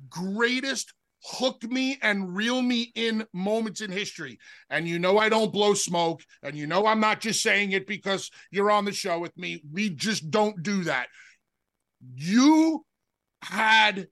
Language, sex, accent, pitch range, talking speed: English, male, American, 190-260 Hz, 165 wpm